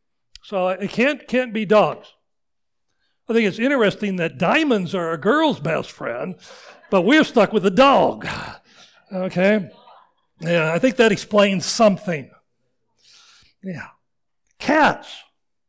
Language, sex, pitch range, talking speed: English, male, 190-255 Hz, 120 wpm